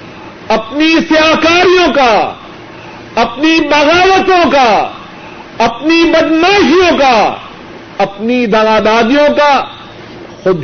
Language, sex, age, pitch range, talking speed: Urdu, male, 50-69, 210-315 Hz, 80 wpm